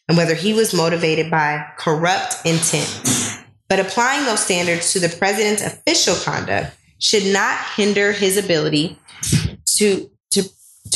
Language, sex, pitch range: English, female, 165-210 Hz